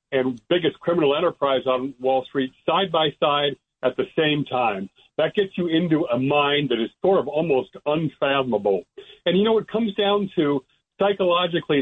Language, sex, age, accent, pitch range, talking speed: English, male, 60-79, American, 130-175 Hz, 160 wpm